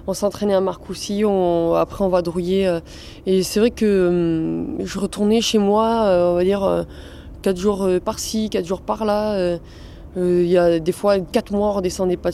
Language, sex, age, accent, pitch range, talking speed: French, female, 20-39, French, 170-205 Hz, 205 wpm